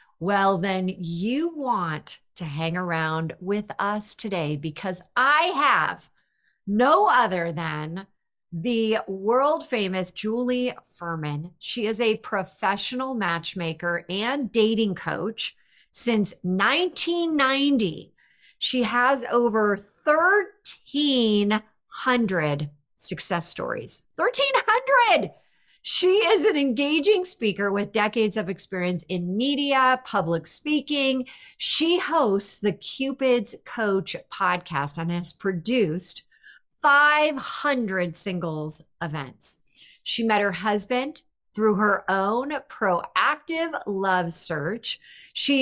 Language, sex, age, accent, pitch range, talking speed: English, female, 50-69, American, 180-265 Hz, 95 wpm